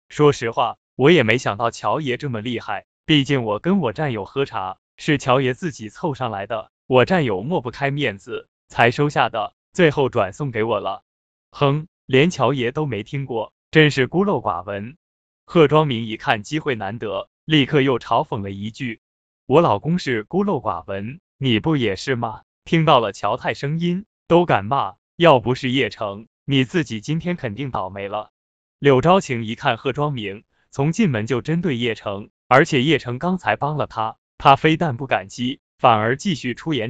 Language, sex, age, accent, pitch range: Chinese, male, 20-39, native, 110-150 Hz